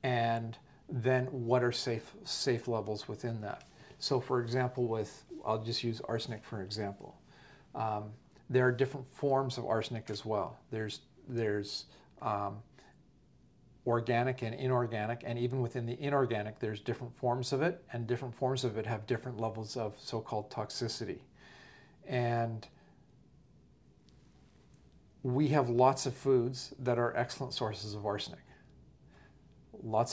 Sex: male